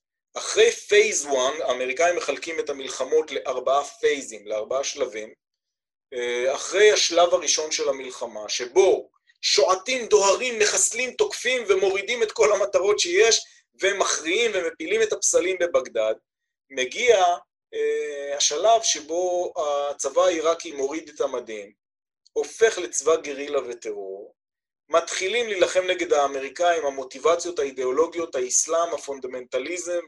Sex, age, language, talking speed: male, 30-49, Hebrew, 100 wpm